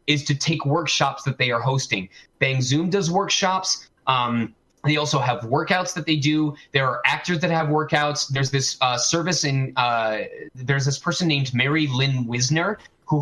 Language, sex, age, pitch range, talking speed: English, male, 20-39, 135-175 Hz, 175 wpm